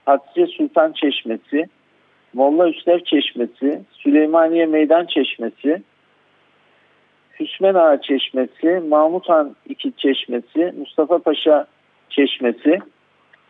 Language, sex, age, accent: Turkish, male, 50-69, native